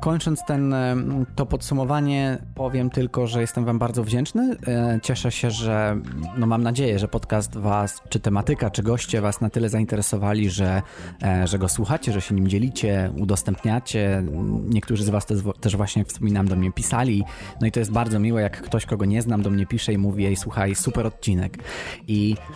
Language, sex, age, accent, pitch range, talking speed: Polish, male, 20-39, native, 100-120 Hz, 180 wpm